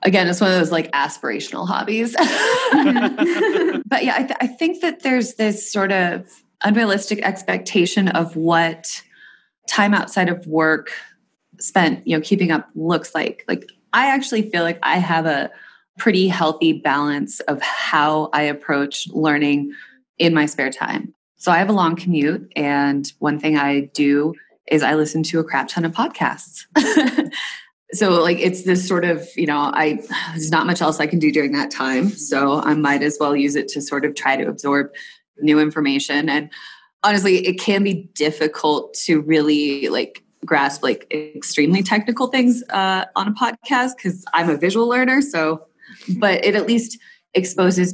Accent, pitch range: American, 150-195 Hz